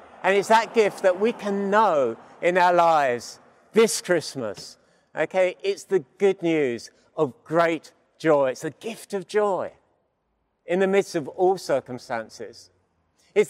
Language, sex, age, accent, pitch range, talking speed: English, male, 50-69, British, 150-195 Hz, 145 wpm